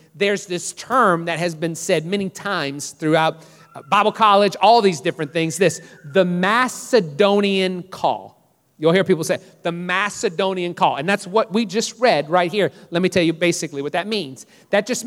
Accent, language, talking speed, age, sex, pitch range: American, English, 180 wpm, 40-59, male, 160-210 Hz